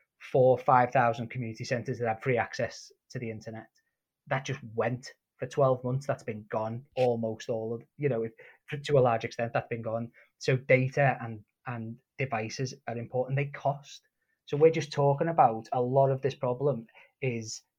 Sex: male